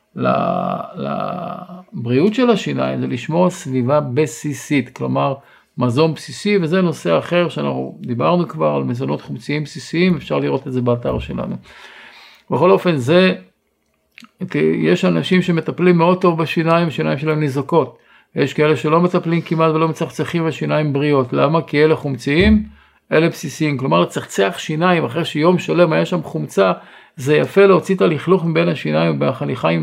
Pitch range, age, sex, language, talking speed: 135-175 Hz, 50-69, male, Hebrew, 140 wpm